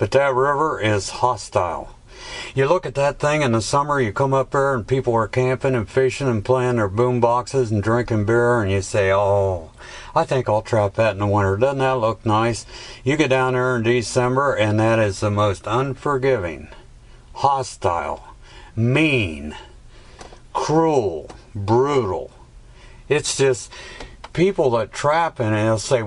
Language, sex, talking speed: English, male, 165 wpm